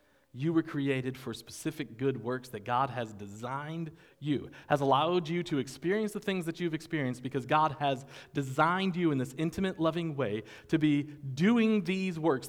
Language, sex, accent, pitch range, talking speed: English, male, American, 110-155 Hz, 180 wpm